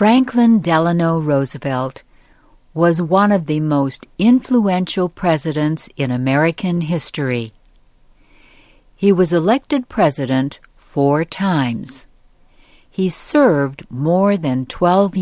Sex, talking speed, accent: female, 95 wpm, American